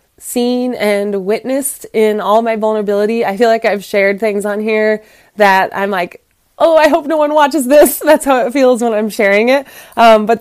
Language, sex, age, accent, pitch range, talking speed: English, female, 20-39, American, 200-240 Hz, 200 wpm